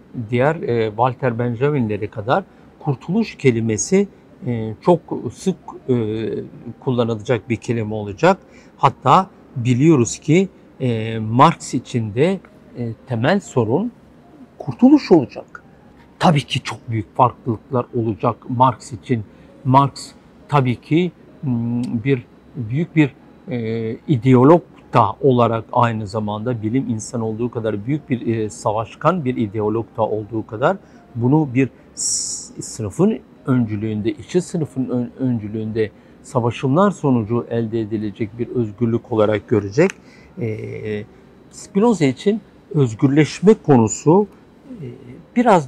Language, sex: Turkish, male